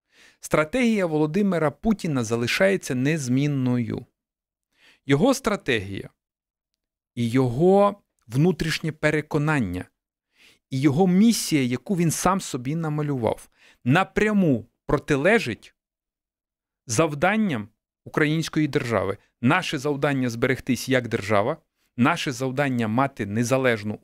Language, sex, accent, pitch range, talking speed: Ukrainian, male, native, 125-175 Hz, 80 wpm